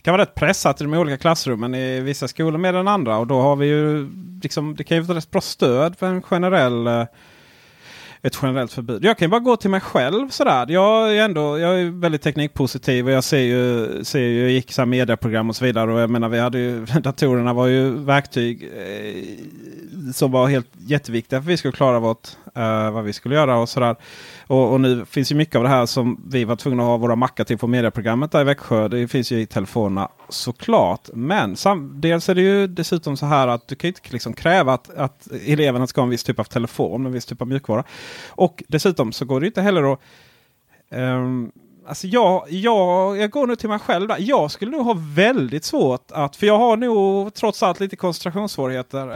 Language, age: Swedish, 30-49